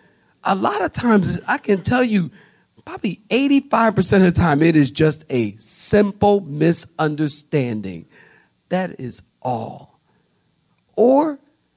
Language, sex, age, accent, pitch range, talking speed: English, male, 50-69, American, 140-230 Hz, 115 wpm